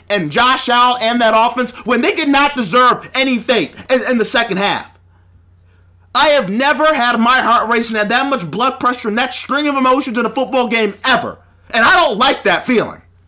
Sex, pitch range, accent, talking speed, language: male, 180-275 Hz, American, 210 wpm, English